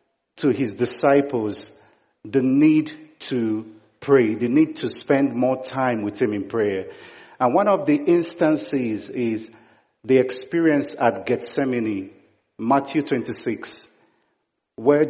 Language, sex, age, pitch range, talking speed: English, male, 50-69, 115-150 Hz, 120 wpm